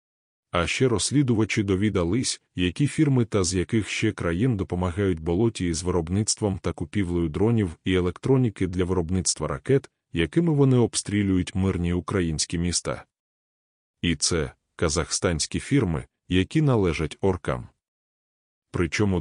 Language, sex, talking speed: Ukrainian, male, 120 wpm